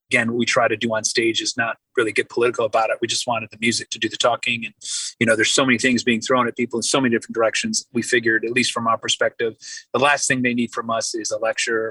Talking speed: 285 wpm